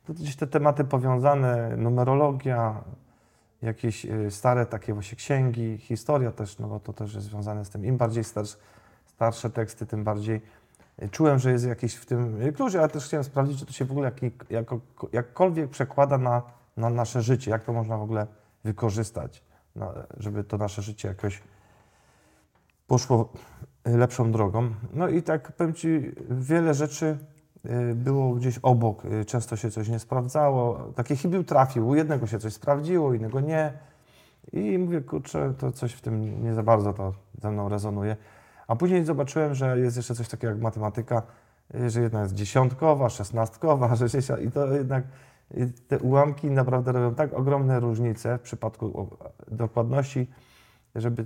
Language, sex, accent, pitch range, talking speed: Polish, male, native, 110-135 Hz, 160 wpm